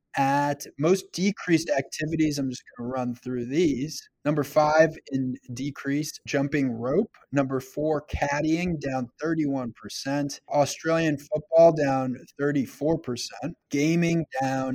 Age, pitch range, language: 20-39, 125-150 Hz, English